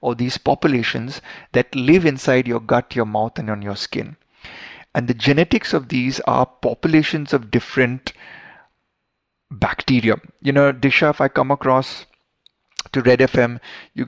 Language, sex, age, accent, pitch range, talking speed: Hindi, male, 20-39, native, 115-135 Hz, 150 wpm